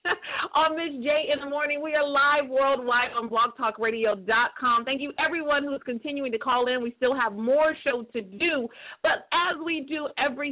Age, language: 40-59, English